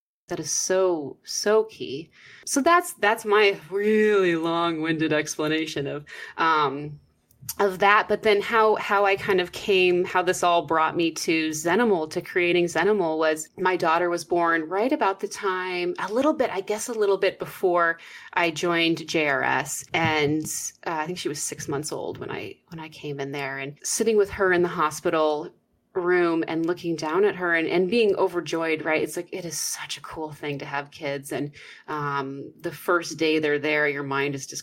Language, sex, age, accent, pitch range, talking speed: English, female, 30-49, American, 155-195 Hz, 195 wpm